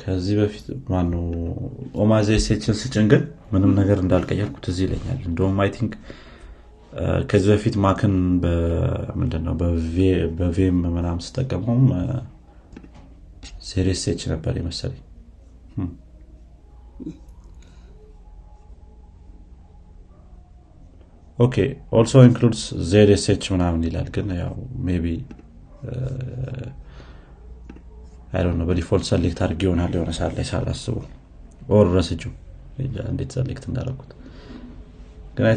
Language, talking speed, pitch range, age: Amharic, 75 wpm, 85-110 Hz, 30-49